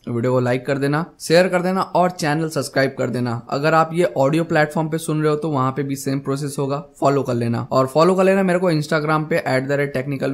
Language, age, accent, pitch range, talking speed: Hindi, 20-39, native, 135-170 Hz, 255 wpm